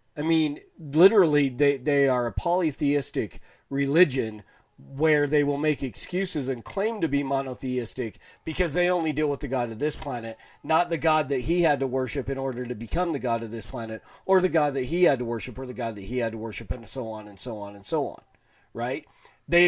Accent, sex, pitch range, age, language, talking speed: American, male, 130-170 Hz, 40-59, English, 225 wpm